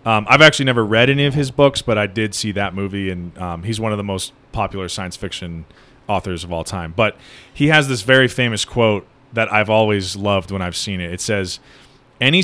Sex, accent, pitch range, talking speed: male, American, 105-135 Hz, 225 wpm